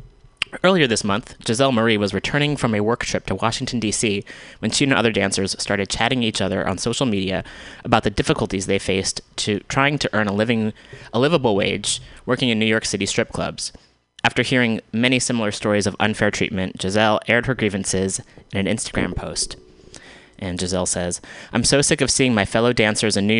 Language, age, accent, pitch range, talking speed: English, 20-39, American, 100-115 Hz, 190 wpm